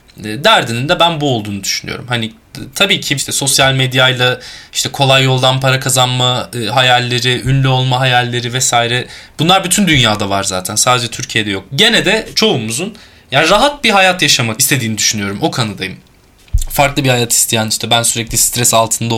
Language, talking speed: Turkish, 165 wpm